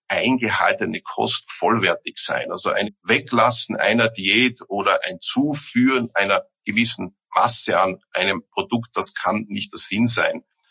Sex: male